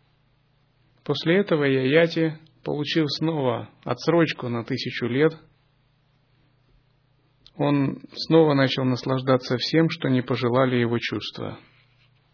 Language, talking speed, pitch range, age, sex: Russian, 90 wpm, 125-140 Hz, 30-49, male